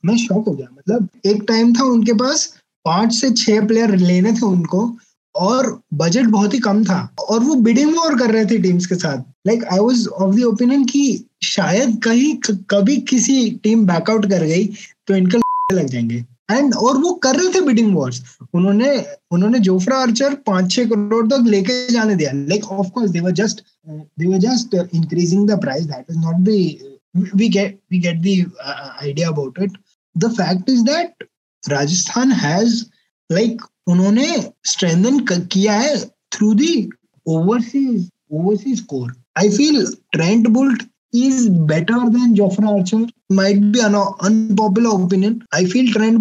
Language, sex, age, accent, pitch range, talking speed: Hindi, male, 20-39, native, 185-235 Hz, 150 wpm